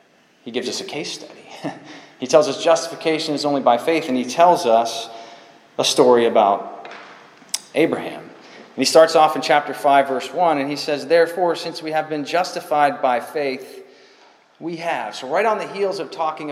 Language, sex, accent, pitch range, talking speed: English, male, American, 125-160 Hz, 185 wpm